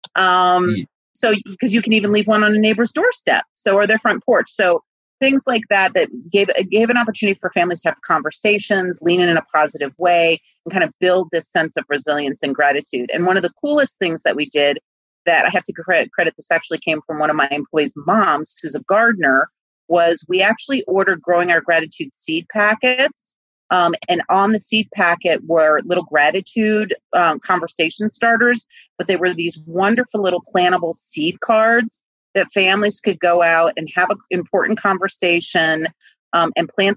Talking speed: 190 wpm